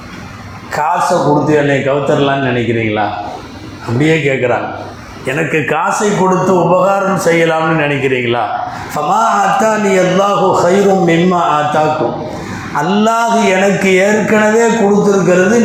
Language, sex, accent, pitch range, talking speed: Tamil, male, native, 145-195 Hz, 95 wpm